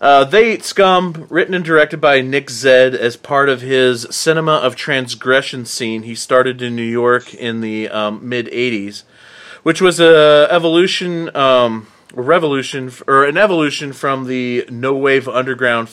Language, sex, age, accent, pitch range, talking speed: English, male, 30-49, American, 115-145 Hz, 160 wpm